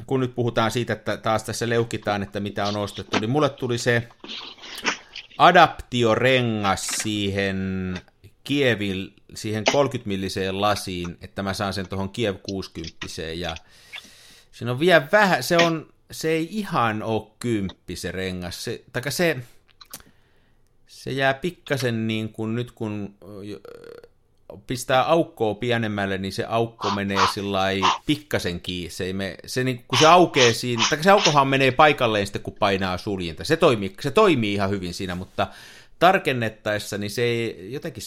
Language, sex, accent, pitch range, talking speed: Finnish, male, native, 95-125 Hz, 145 wpm